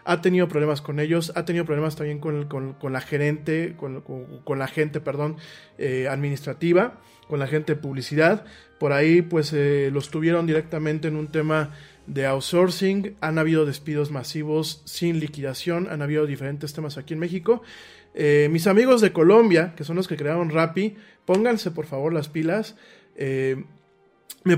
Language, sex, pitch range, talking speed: Spanish, male, 145-180 Hz, 170 wpm